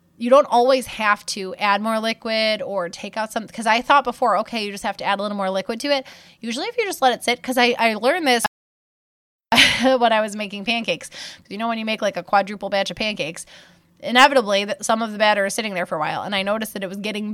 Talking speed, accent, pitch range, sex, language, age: 255 wpm, American, 195-235 Hz, female, English, 20-39